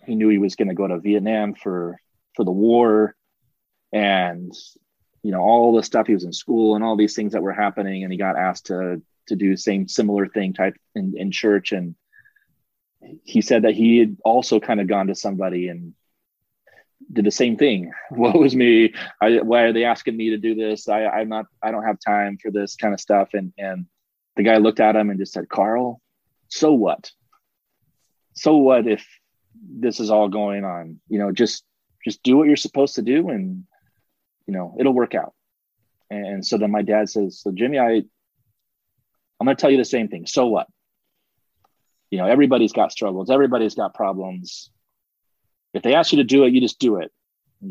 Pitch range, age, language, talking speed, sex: 100-115 Hz, 20-39, English, 200 wpm, male